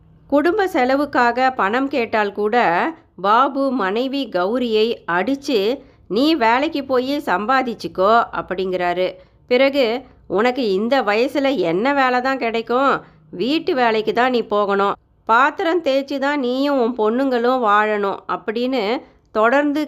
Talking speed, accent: 105 wpm, native